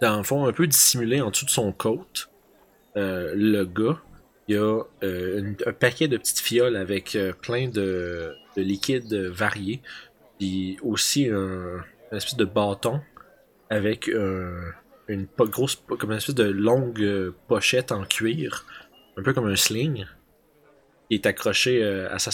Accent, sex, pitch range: Canadian, male, 95-120 Hz